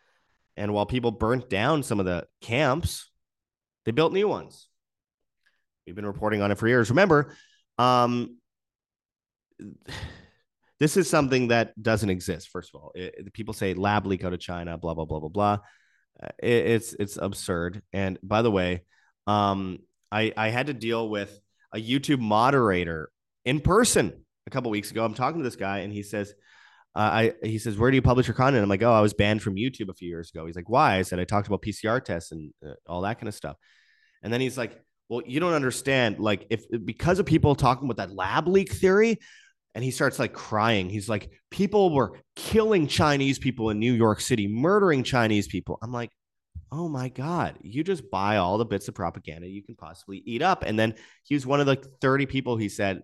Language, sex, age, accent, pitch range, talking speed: English, male, 30-49, American, 100-130 Hz, 210 wpm